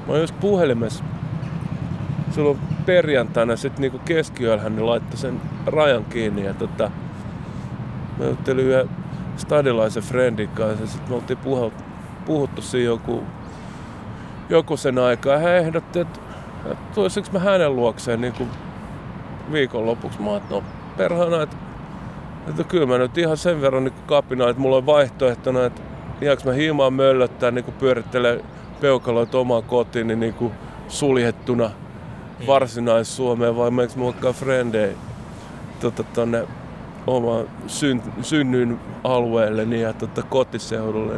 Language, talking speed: Finnish, 125 wpm